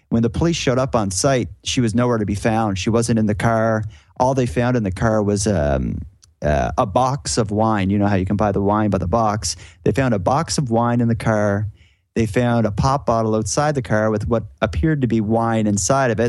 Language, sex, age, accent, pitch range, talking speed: English, male, 30-49, American, 100-125 Hz, 250 wpm